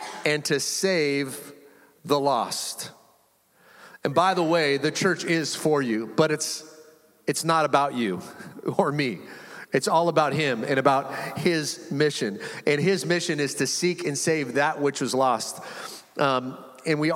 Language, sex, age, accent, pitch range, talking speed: English, male, 40-59, American, 145-180 Hz, 155 wpm